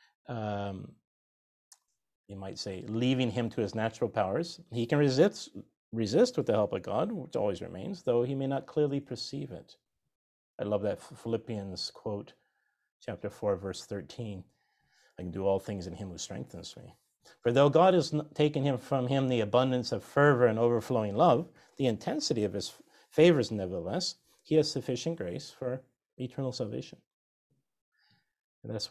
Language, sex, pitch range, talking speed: English, male, 110-145 Hz, 160 wpm